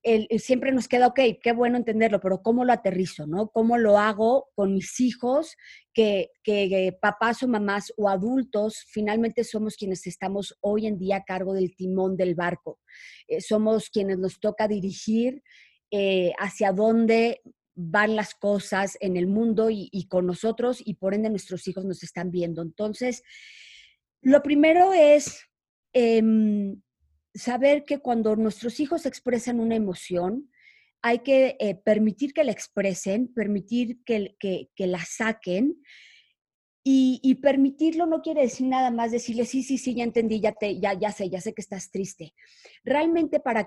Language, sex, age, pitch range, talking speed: Spanish, female, 30-49, 195-250 Hz, 165 wpm